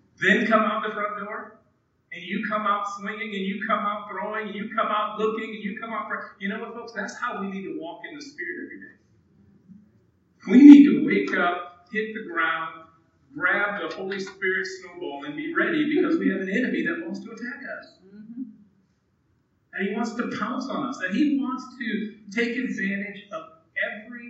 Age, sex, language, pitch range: 50-69, male, English, 190-245 Hz